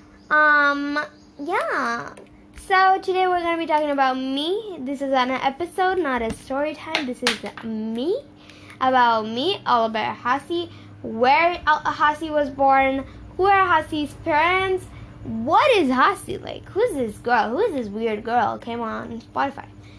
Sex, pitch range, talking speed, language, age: female, 240-310 Hz, 150 wpm, English, 10-29